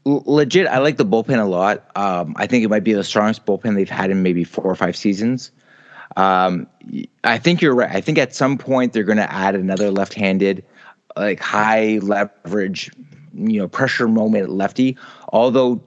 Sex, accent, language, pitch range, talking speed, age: male, American, English, 105-140 Hz, 185 wpm, 30-49